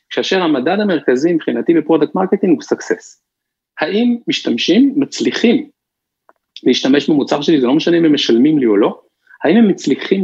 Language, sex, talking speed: Hebrew, male, 150 wpm